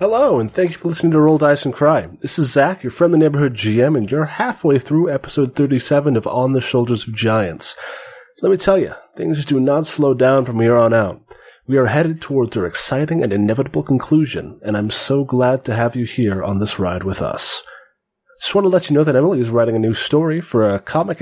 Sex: male